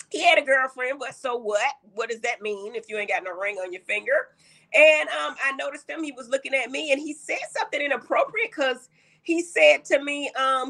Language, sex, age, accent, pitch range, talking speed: English, female, 30-49, American, 245-315 Hz, 230 wpm